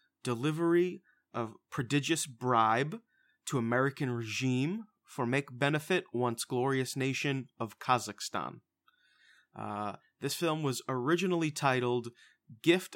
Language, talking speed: English, 100 wpm